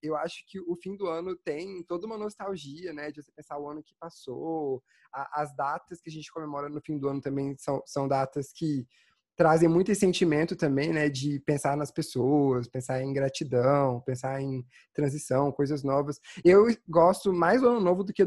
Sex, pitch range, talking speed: male, 140-180 Hz, 195 wpm